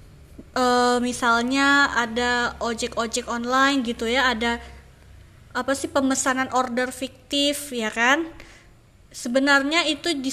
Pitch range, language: 230-275 Hz, Indonesian